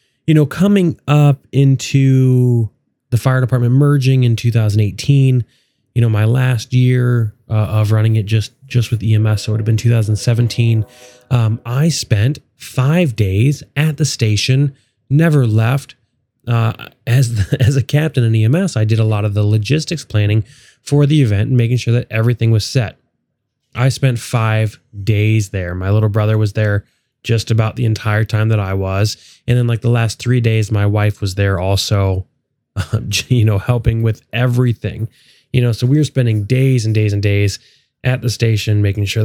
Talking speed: 180 wpm